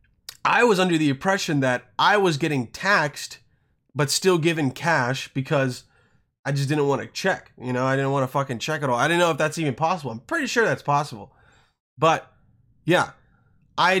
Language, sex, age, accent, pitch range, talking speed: English, male, 20-39, American, 125-165 Hz, 195 wpm